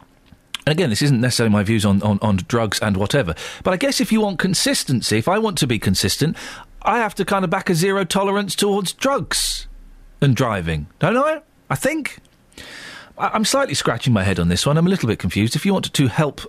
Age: 40-59